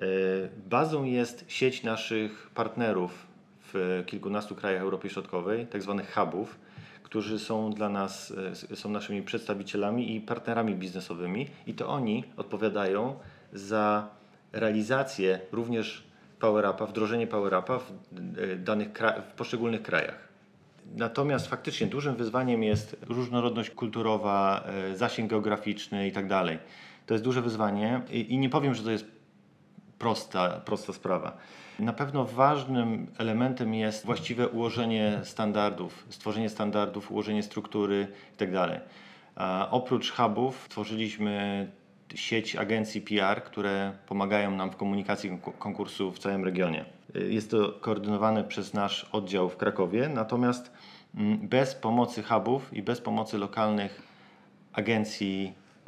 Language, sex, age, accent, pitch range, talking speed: Polish, male, 40-59, native, 100-115 Hz, 115 wpm